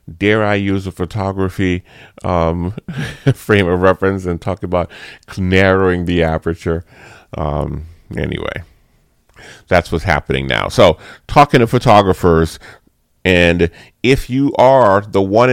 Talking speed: 120 wpm